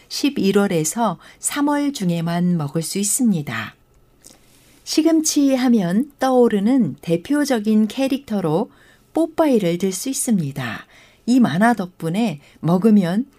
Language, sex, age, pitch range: Korean, female, 60-79, 185-270 Hz